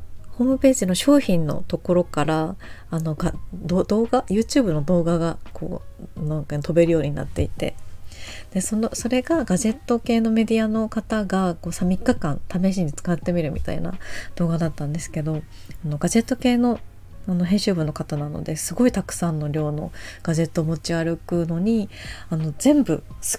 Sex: female